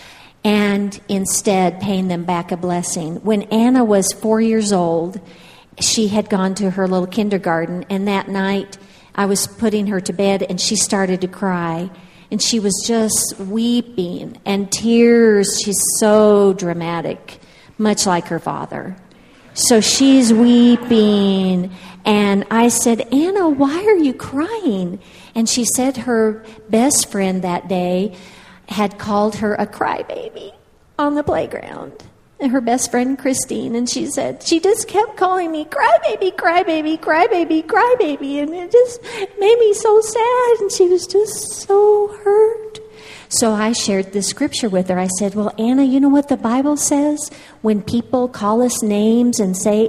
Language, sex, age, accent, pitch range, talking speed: English, female, 50-69, American, 195-285 Hz, 155 wpm